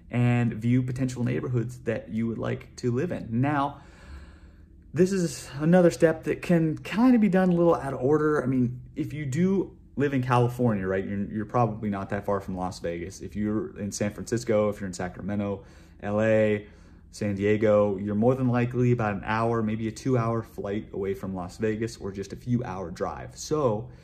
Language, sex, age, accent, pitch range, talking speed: English, male, 30-49, American, 100-125 Hz, 200 wpm